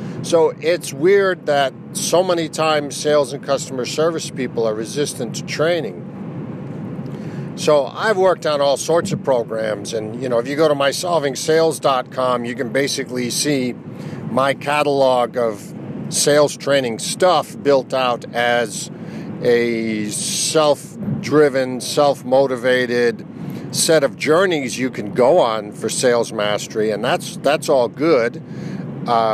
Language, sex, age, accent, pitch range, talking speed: English, male, 50-69, American, 120-155 Hz, 130 wpm